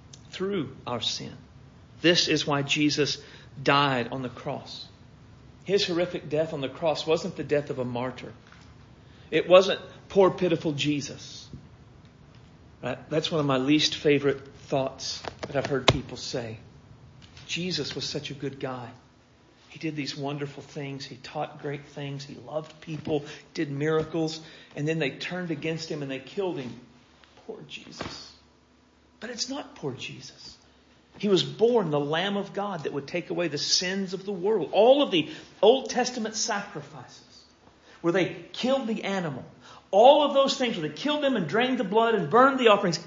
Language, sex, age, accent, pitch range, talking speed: English, male, 40-59, American, 135-210 Hz, 165 wpm